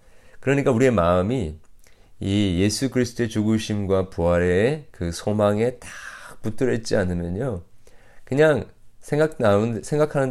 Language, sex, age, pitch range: Korean, male, 40-59, 95-125 Hz